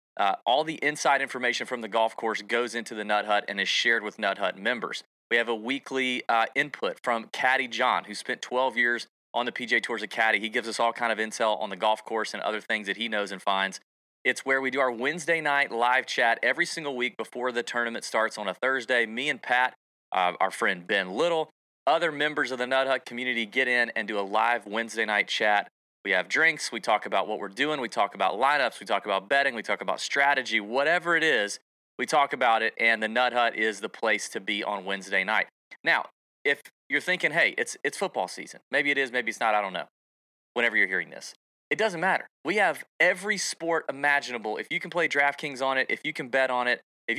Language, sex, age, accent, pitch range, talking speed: English, male, 30-49, American, 110-140 Hz, 235 wpm